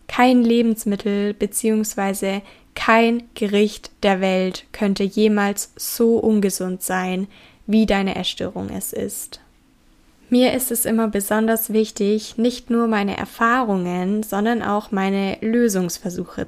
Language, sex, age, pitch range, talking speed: German, female, 20-39, 190-215 Hz, 115 wpm